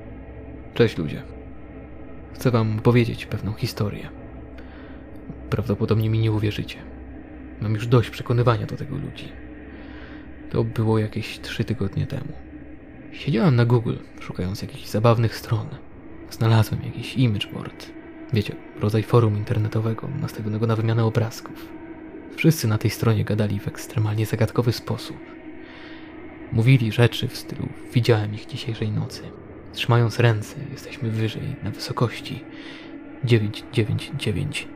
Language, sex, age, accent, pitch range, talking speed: Polish, male, 20-39, native, 110-145 Hz, 115 wpm